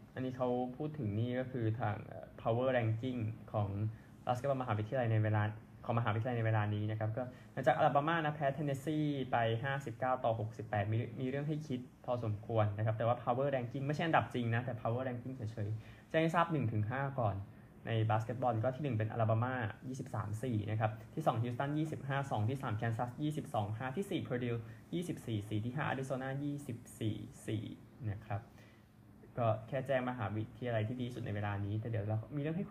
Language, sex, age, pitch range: Thai, male, 20-39, 110-130 Hz